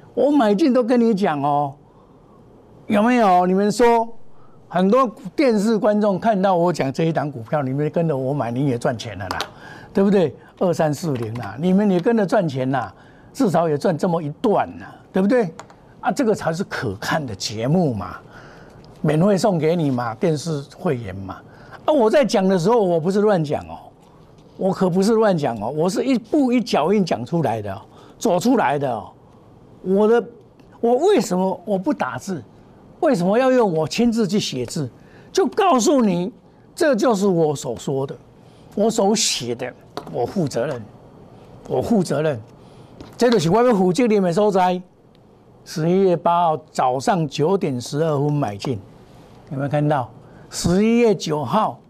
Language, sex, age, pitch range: Chinese, male, 60-79, 145-220 Hz